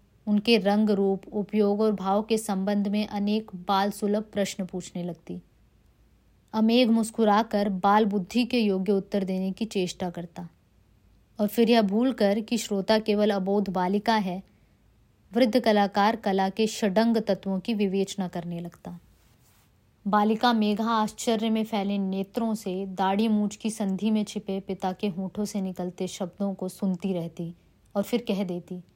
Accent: Indian